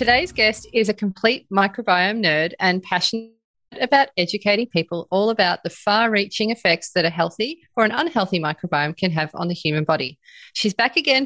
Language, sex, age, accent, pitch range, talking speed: English, female, 30-49, Australian, 170-230 Hz, 180 wpm